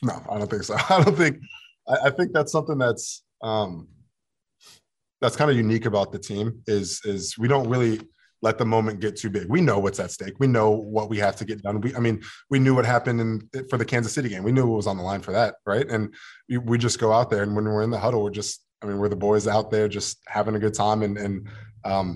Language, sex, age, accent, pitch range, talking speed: English, male, 20-39, American, 100-115 Hz, 265 wpm